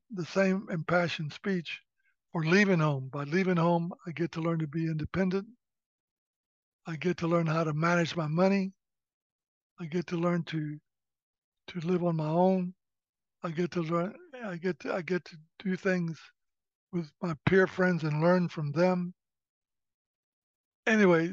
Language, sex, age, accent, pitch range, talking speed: English, male, 60-79, American, 160-185 Hz, 160 wpm